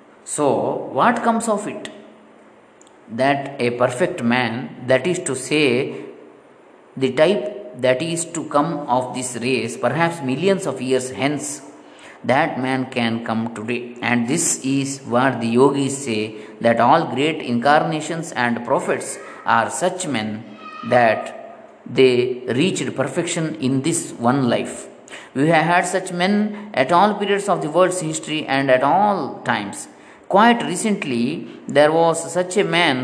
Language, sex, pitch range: Kannada, male, 125-180 Hz